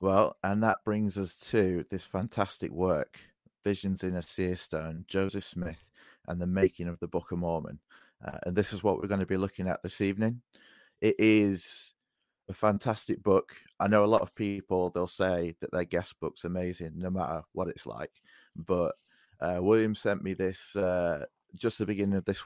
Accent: British